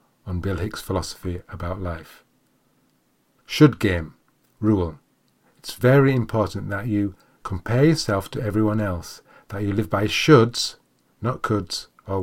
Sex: male